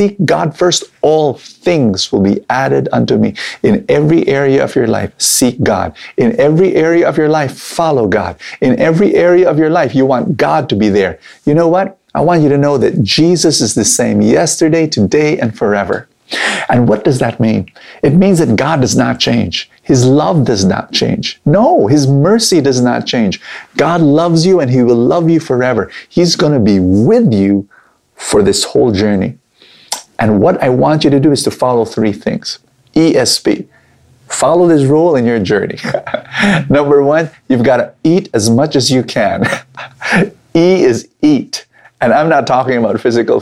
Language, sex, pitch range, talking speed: English, male, 120-165 Hz, 190 wpm